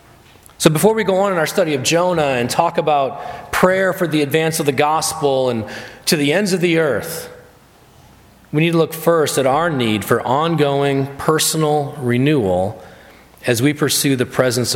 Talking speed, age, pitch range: 180 wpm, 30-49, 110-155 Hz